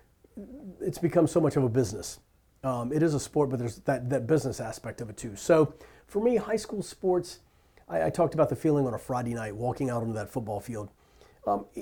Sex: male